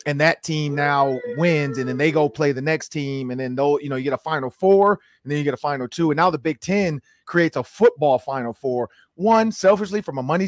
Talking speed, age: 260 wpm, 30-49